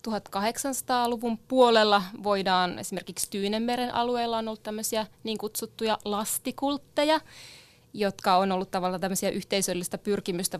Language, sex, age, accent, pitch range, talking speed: Finnish, female, 20-39, native, 185-210 Hz, 110 wpm